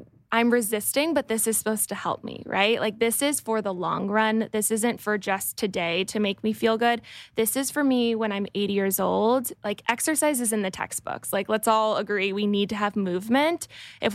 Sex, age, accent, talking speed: female, 10-29, American, 220 wpm